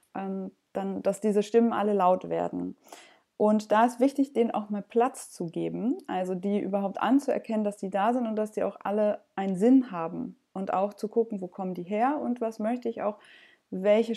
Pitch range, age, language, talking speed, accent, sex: 195-235 Hz, 20-39, German, 195 wpm, German, female